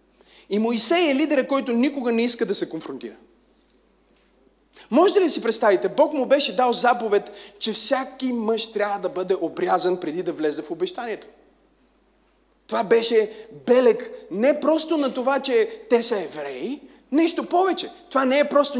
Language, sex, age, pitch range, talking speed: Bulgarian, male, 30-49, 215-295 Hz, 160 wpm